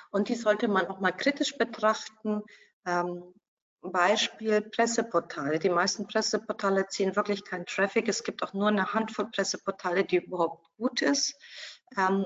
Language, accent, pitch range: German, German, 190-230 Hz